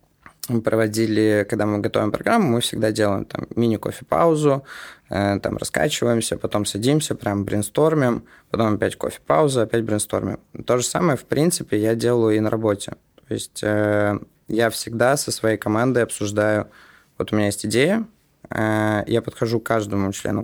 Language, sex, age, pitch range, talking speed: Russian, male, 20-39, 105-125 Hz, 155 wpm